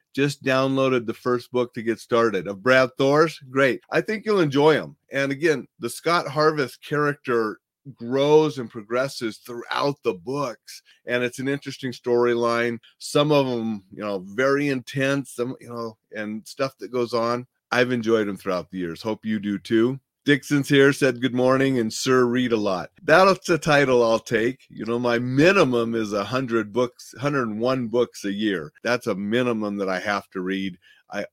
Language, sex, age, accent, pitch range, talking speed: English, male, 40-59, American, 110-140 Hz, 180 wpm